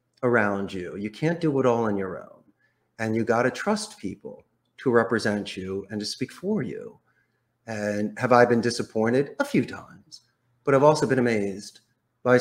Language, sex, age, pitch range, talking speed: English, male, 30-49, 105-130 Hz, 185 wpm